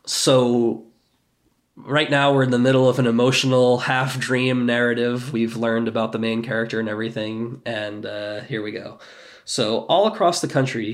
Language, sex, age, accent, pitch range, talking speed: English, male, 20-39, American, 120-145 Hz, 170 wpm